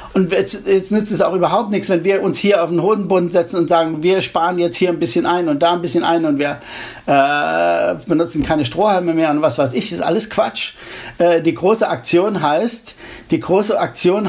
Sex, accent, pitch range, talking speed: male, German, 165-200 Hz, 225 wpm